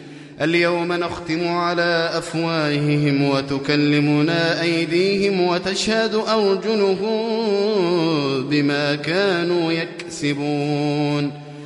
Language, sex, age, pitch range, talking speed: Arabic, male, 30-49, 145-190 Hz, 55 wpm